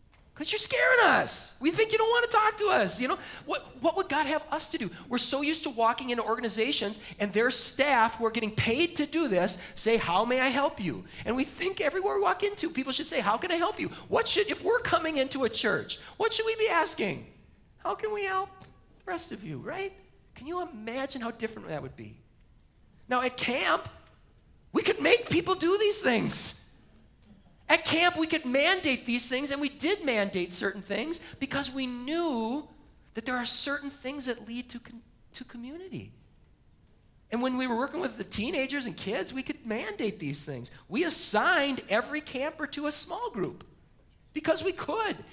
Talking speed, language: 205 wpm, English